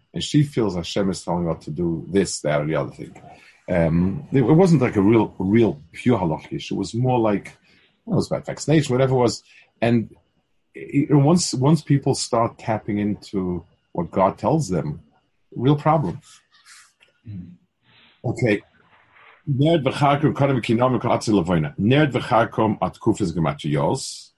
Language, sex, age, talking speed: English, male, 50-69, 125 wpm